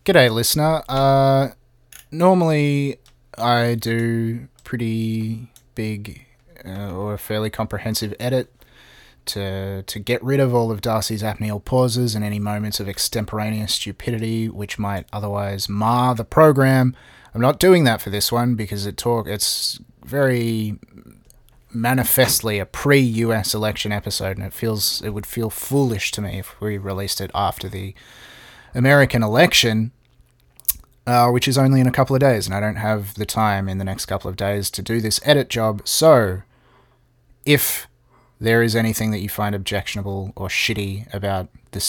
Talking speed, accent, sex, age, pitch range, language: 155 wpm, Australian, male, 30-49, 100-125 Hz, English